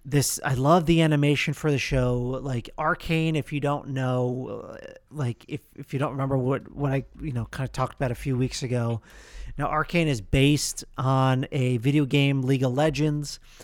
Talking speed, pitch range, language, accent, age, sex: 195 wpm, 125-145 Hz, English, American, 40-59, male